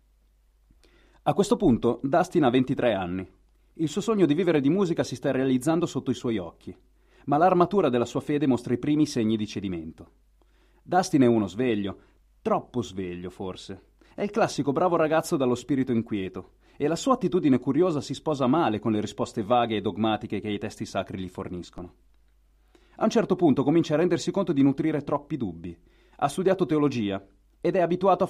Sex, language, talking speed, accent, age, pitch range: male, Italian, 180 wpm, native, 30-49, 95-155 Hz